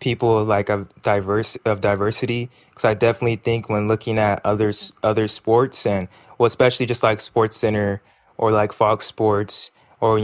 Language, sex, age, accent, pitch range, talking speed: English, male, 20-39, American, 105-115 Hz, 170 wpm